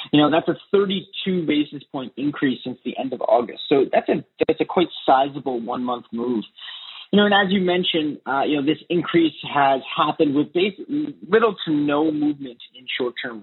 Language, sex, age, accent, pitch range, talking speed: English, male, 30-49, American, 135-185 Hz, 200 wpm